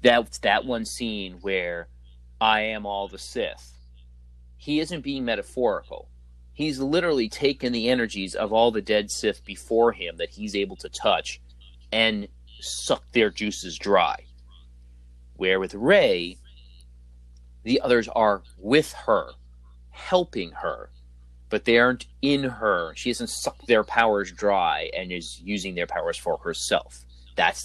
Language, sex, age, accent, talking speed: English, male, 30-49, American, 140 wpm